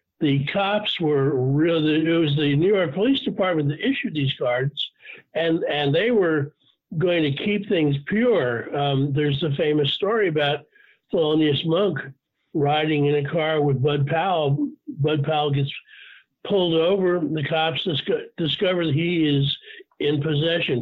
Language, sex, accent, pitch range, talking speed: English, male, American, 150-190 Hz, 150 wpm